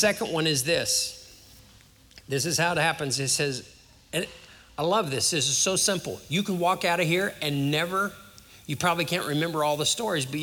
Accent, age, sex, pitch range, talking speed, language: American, 50-69, male, 125-170 Hz, 195 wpm, English